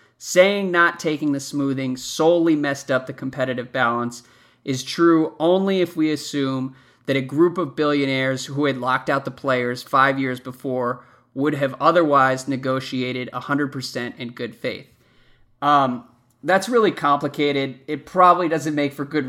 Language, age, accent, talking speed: English, 30-49, American, 150 wpm